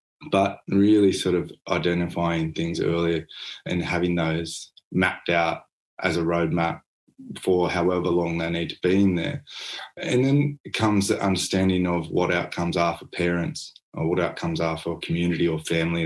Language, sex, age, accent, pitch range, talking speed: English, male, 20-39, Australian, 85-95 Hz, 160 wpm